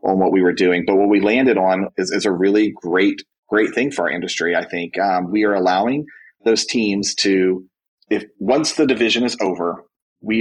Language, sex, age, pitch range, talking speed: English, male, 30-49, 95-105 Hz, 210 wpm